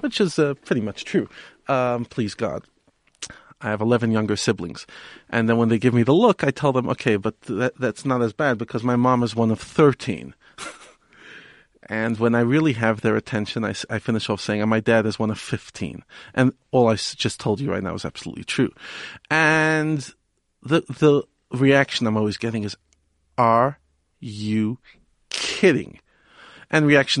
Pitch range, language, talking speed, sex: 110-140 Hz, English, 185 wpm, male